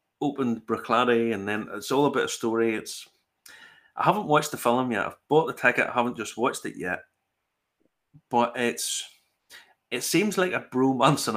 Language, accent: English, British